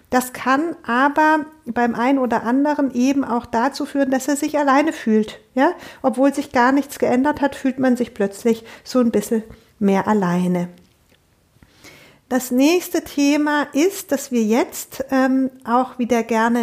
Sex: female